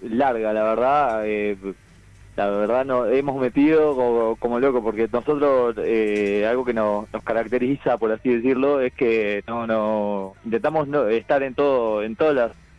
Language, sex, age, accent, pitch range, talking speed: Spanish, male, 20-39, Argentinian, 100-125 Hz, 165 wpm